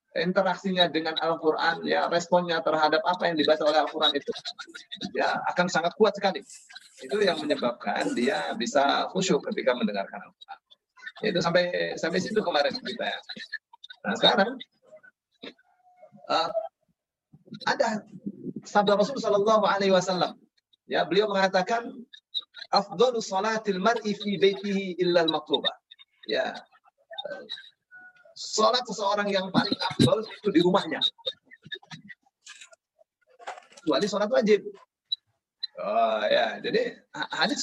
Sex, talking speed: male, 110 wpm